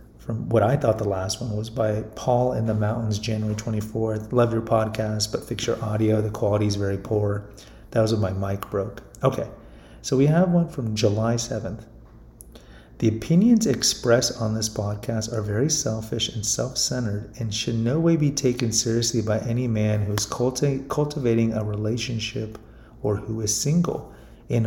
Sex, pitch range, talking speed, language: male, 110-125 Hz, 180 wpm, English